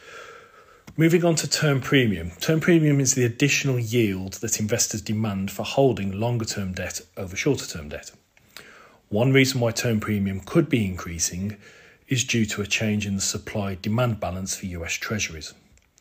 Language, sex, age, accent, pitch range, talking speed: English, male, 40-59, British, 95-120 Hz, 165 wpm